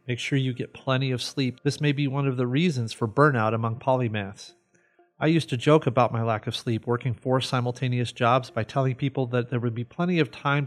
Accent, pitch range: American, 120-145 Hz